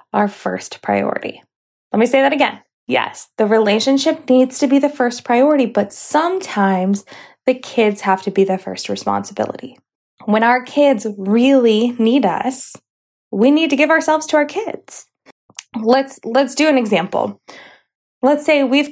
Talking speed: 155 wpm